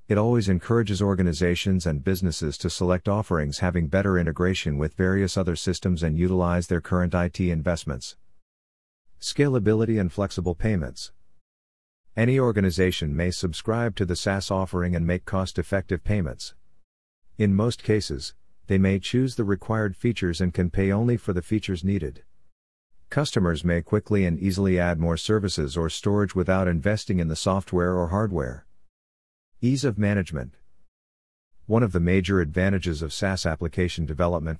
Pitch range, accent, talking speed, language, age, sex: 85-100 Hz, American, 145 wpm, English, 50-69, male